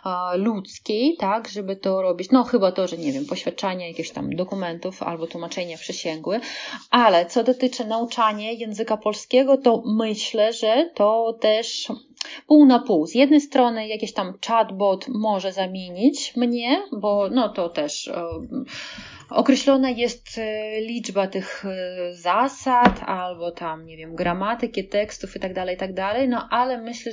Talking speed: 140 wpm